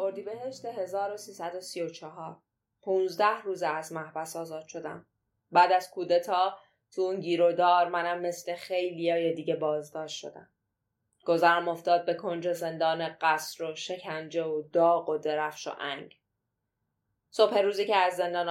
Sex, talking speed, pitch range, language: female, 145 wpm, 155-185 Hz, Persian